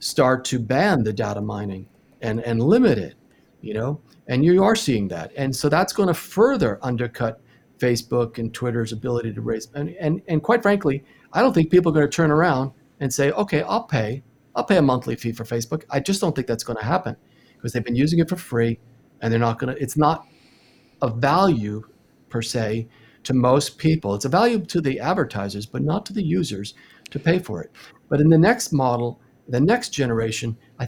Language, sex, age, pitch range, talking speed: English, male, 50-69, 115-150 Hz, 200 wpm